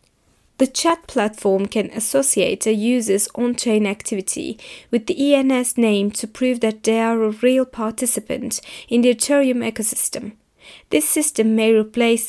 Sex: female